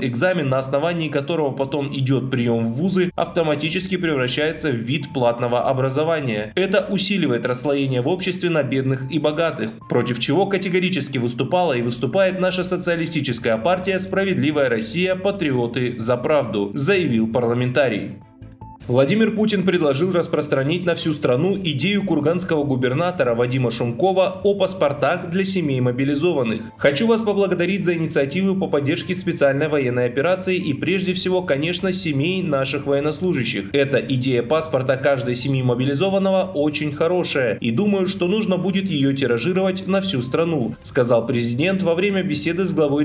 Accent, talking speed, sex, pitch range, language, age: native, 140 wpm, male, 130-185 Hz, Russian, 20-39